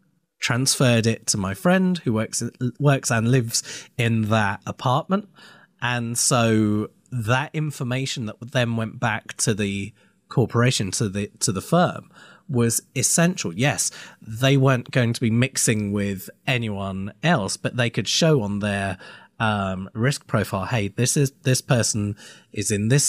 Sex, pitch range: male, 105-135 Hz